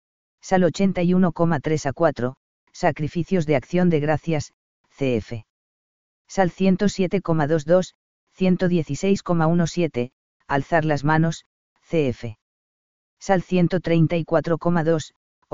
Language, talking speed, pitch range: Spanish, 75 wpm, 140-175 Hz